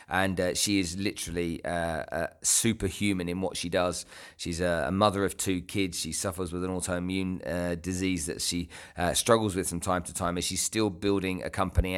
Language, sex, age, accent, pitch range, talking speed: English, male, 40-59, British, 85-105 Hz, 200 wpm